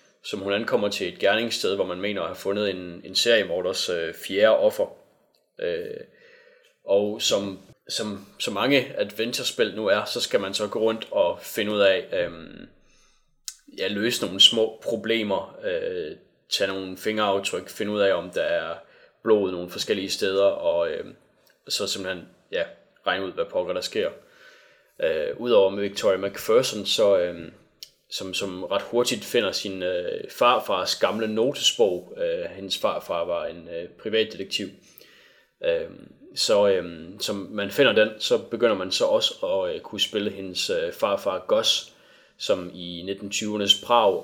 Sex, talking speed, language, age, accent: male, 160 wpm, Danish, 20-39, native